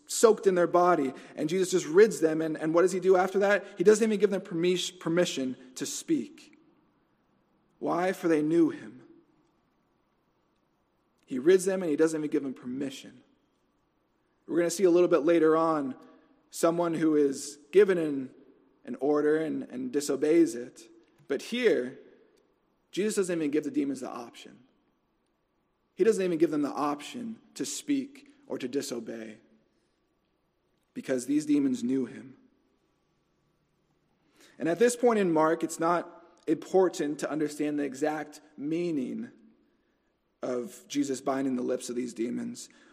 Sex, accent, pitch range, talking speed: male, American, 145-225 Hz, 150 wpm